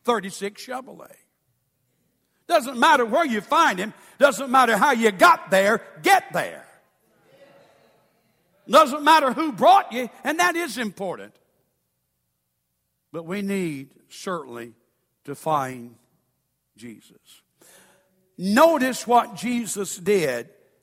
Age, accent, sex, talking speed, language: 60-79, American, male, 105 wpm, English